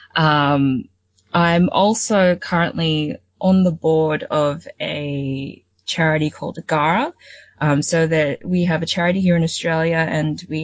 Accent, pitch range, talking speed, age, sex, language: Australian, 145-170 Hz, 135 wpm, 20-39, female, English